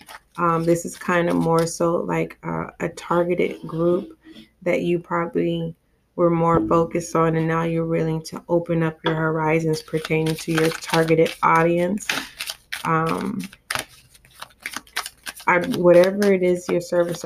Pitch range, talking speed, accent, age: 165-175 Hz, 135 wpm, American, 20-39